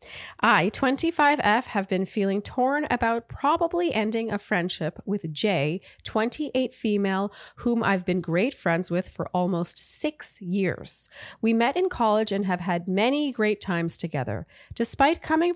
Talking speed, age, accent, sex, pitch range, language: 145 wpm, 30-49, American, female, 170-225 Hz, English